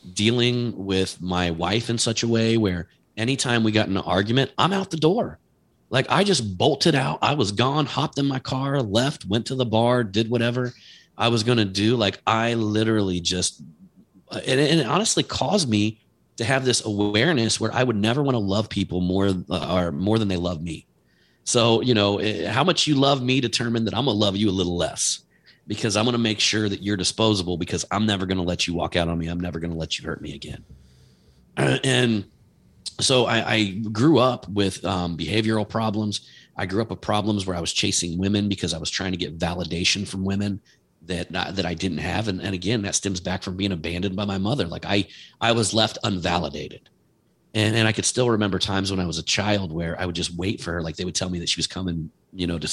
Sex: male